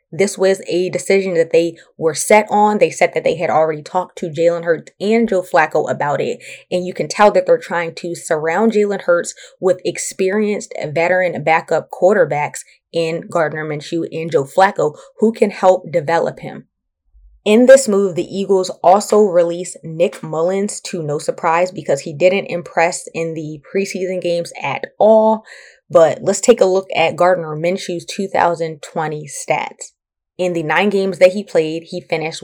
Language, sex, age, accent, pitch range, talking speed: English, female, 20-39, American, 165-195 Hz, 170 wpm